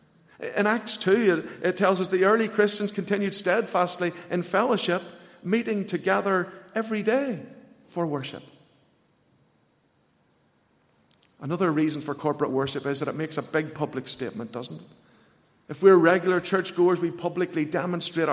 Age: 50-69